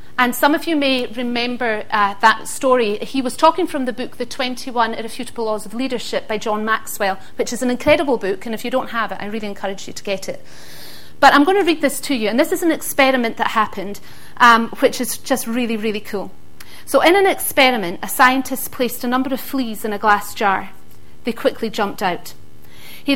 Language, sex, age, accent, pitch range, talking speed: English, female, 40-59, British, 215-265 Hz, 220 wpm